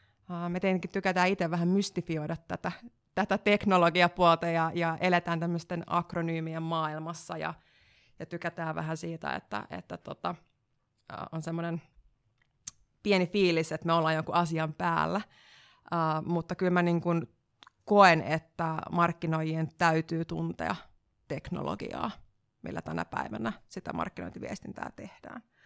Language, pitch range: Finnish, 160-180 Hz